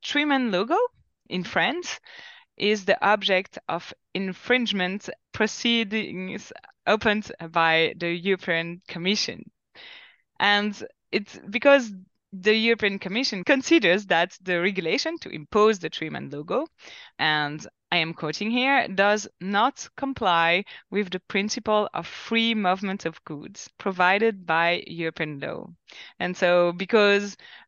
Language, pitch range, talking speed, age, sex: English, 170-215 Hz, 115 wpm, 20-39, female